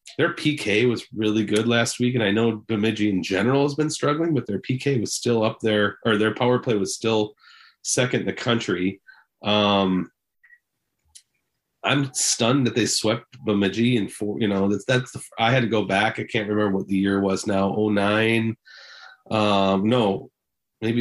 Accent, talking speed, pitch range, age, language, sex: American, 175 wpm, 100-125 Hz, 30-49, English, male